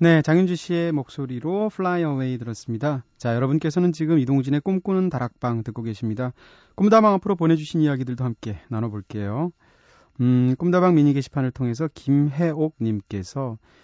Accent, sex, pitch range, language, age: native, male, 115-155 Hz, Korean, 30-49